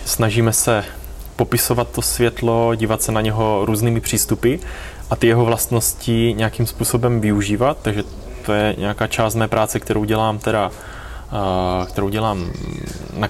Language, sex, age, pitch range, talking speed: Czech, male, 20-39, 100-115 Hz, 130 wpm